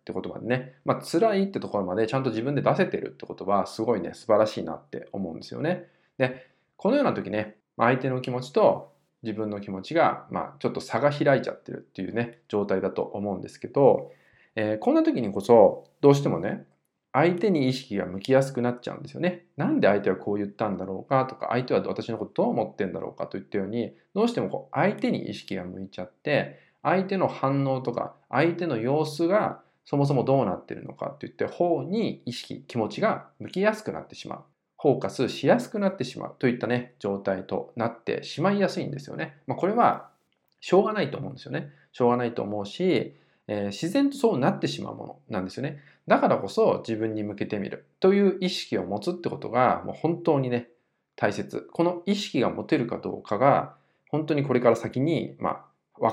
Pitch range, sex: 110-170 Hz, male